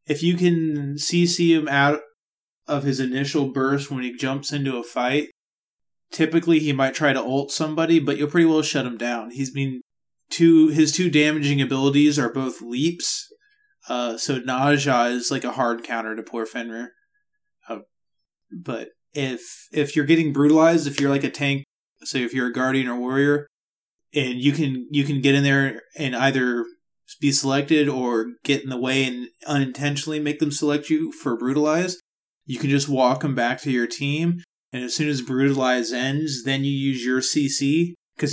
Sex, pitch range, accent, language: male, 130-150 Hz, American, English